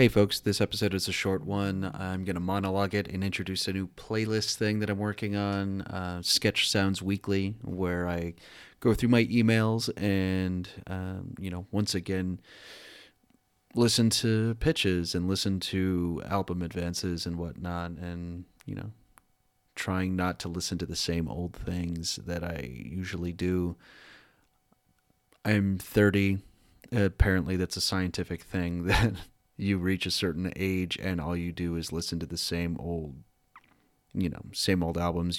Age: 30-49